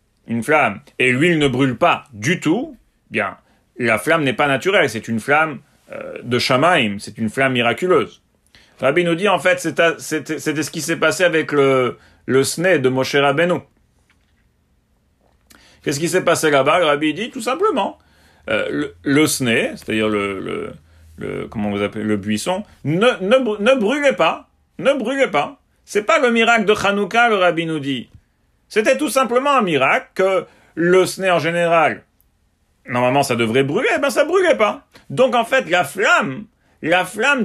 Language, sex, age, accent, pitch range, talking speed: English, male, 40-59, French, 135-200 Hz, 175 wpm